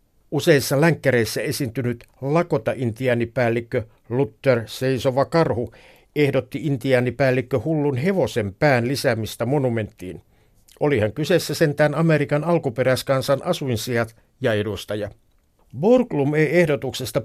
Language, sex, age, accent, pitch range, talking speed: Finnish, male, 60-79, native, 120-145 Hz, 85 wpm